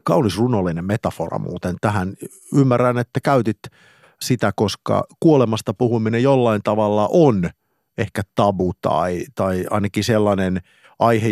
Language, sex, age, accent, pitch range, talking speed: Finnish, male, 50-69, native, 95-130 Hz, 115 wpm